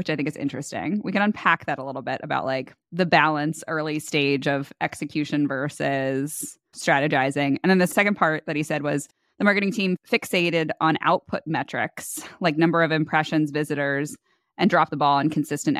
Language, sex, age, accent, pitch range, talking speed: English, female, 20-39, American, 145-175 Hz, 185 wpm